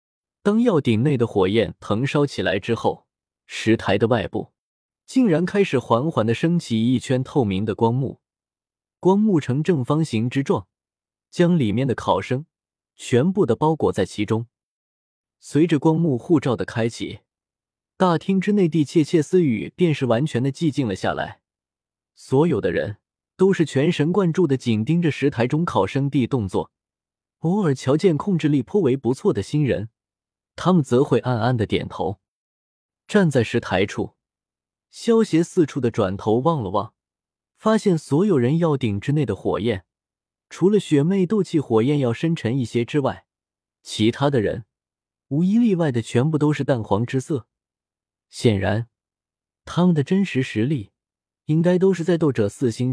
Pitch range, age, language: 110-165 Hz, 20-39, Chinese